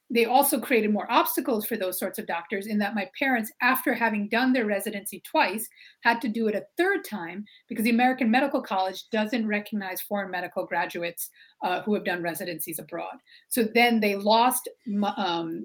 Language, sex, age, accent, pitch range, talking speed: English, female, 30-49, American, 200-260 Hz, 185 wpm